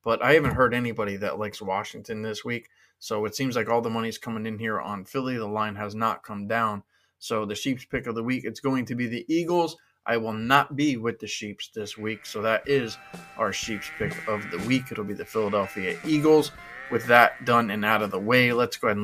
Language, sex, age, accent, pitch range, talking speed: English, male, 20-39, American, 105-130 Hz, 245 wpm